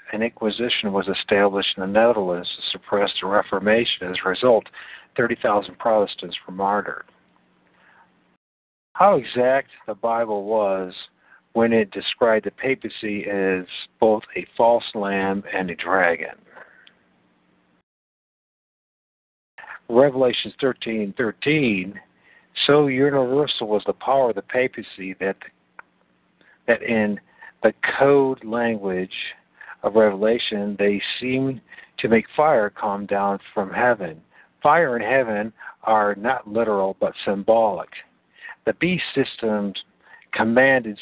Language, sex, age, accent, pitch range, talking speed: English, male, 50-69, American, 100-125 Hz, 110 wpm